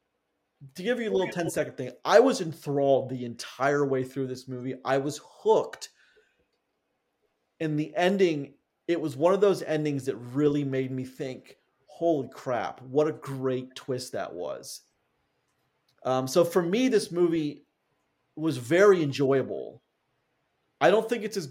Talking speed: 155 wpm